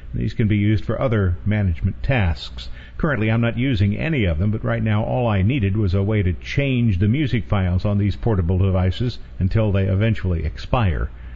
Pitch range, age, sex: 90-115 Hz, 50-69, male